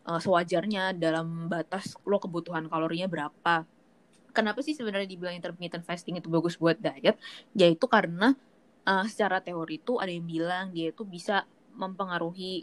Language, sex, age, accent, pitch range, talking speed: Indonesian, female, 20-39, native, 170-215 Hz, 145 wpm